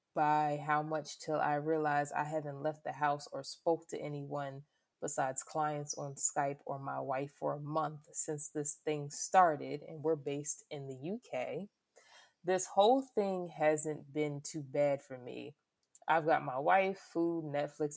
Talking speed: 165 wpm